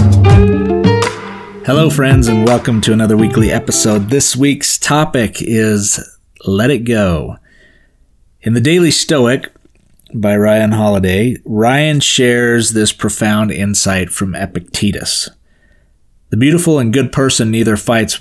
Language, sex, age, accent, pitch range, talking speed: English, male, 30-49, American, 105-130 Hz, 120 wpm